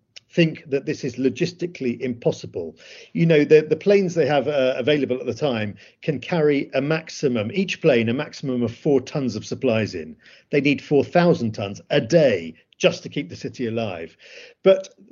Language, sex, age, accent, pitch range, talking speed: English, male, 50-69, British, 125-175 Hz, 185 wpm